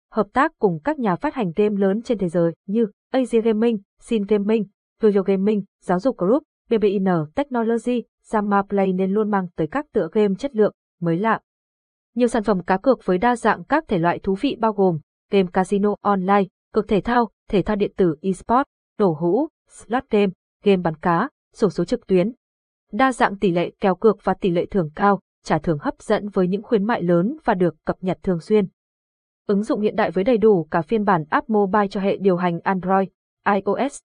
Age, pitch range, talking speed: 20-39, 185-225 Hz, 210 wpm